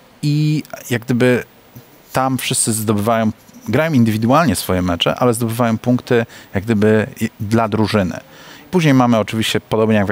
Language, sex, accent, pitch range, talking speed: Polish, male, native, 95-115 Hz, 135 wpm